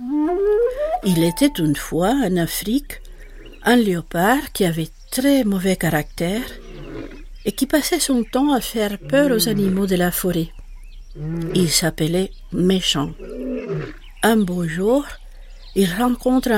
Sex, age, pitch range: female, 60-79, 175-240 Hz